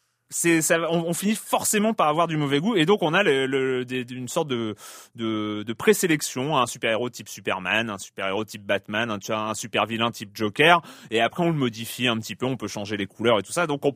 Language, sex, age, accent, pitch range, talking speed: French, male, 30-49, French, 110-150 Hz, 240 wpm